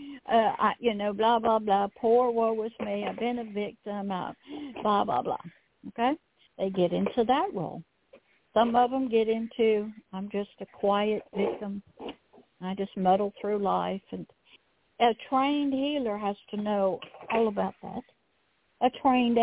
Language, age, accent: English, 60-79, American